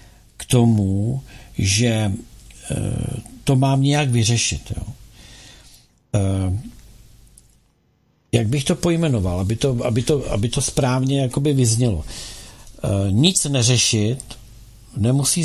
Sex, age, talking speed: male, 50-69, 90 wpm